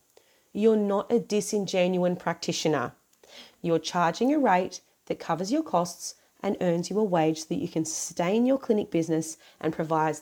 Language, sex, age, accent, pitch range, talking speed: English, female, 30-49, Australian, 170-230 Hz, 165 wpm